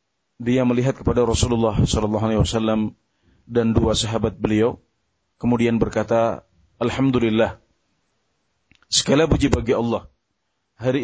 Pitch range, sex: 110-130 Hz, male